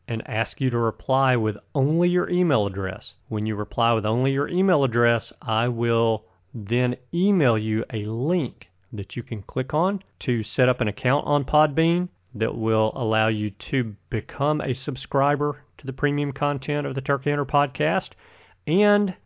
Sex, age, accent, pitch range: male, 40-59, American, 110-135 Hz